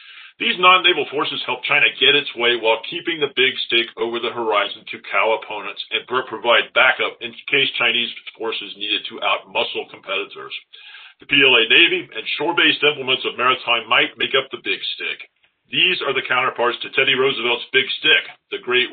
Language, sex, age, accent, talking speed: English, male, 40-59, American, 175 wpm